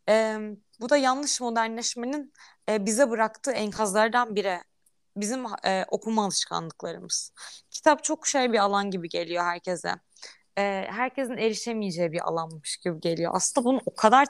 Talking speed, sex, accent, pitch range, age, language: 140 wpm, female, native, 195-235 Hz, 20-39, Turkish